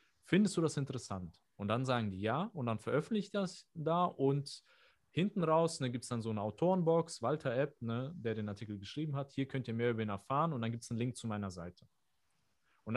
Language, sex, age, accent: German, male, 30-49, German